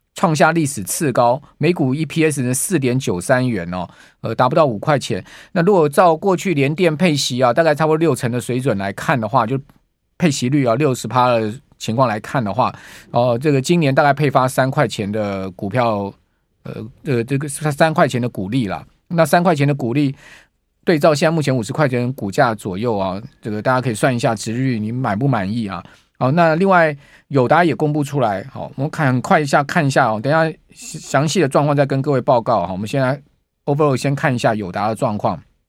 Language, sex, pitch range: Chinese, male, 125-160 Hz